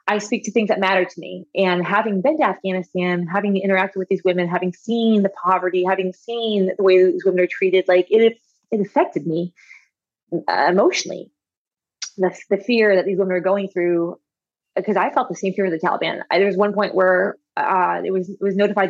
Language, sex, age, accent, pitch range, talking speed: English, female, 20-39, American, 180-210 Hz, 210 wpm